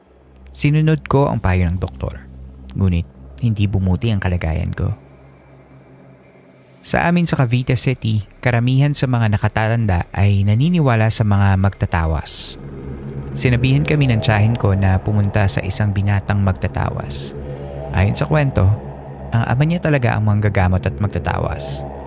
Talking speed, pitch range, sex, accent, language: 135 wpm, 95-125 Hz, male, native, Filipino